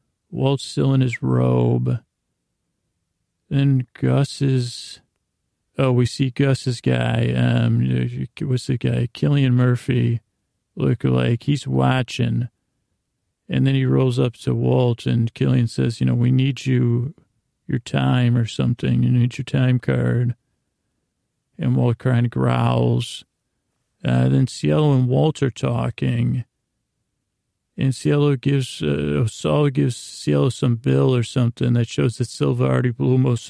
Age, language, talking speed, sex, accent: 40-59, English, 140 wpm, male, American